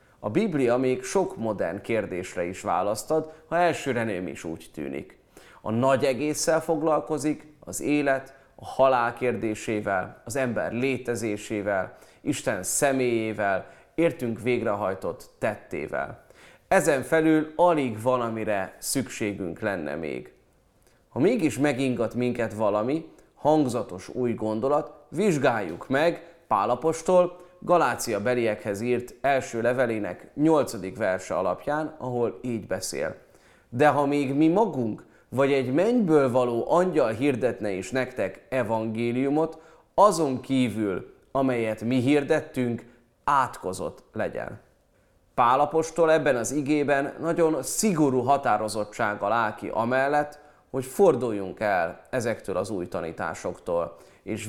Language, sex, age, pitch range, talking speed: Hungarian, male, 30-49, 115-150 Hz, 110 wpm